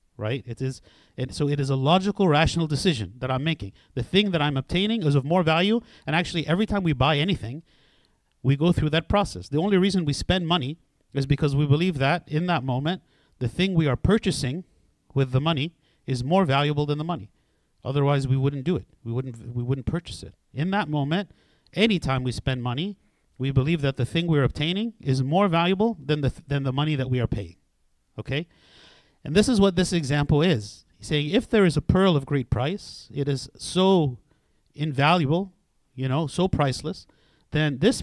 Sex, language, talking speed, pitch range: male, English, 200 wpm, 130-175 Hz